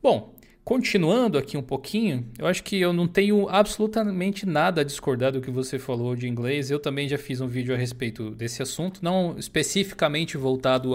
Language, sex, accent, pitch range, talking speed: Portuguese, male, Brazilian, 120-155 Hz, 185 wpm